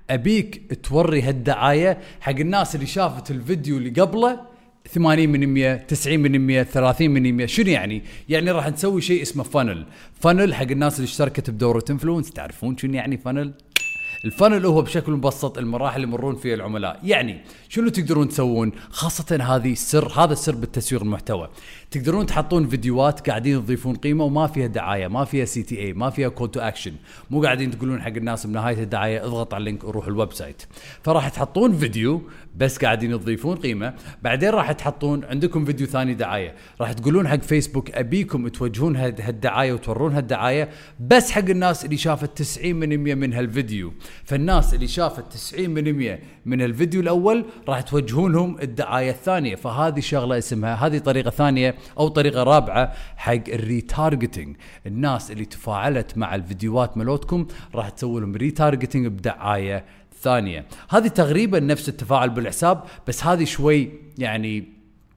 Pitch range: 120-155 Hz